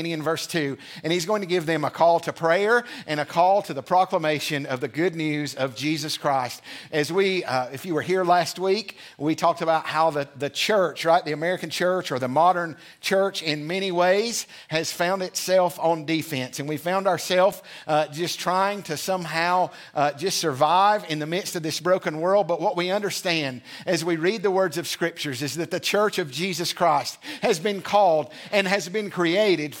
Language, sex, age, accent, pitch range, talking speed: English, male, 50-69, American, 160-200 Hz, 205 wpm